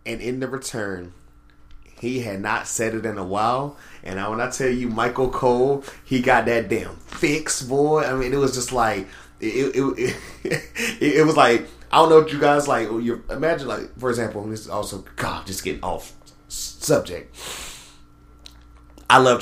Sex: male